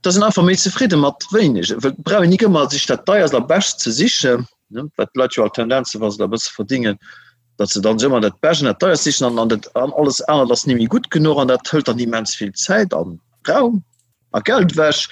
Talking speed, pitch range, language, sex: 205 wpm, 125-185 Hz, English, male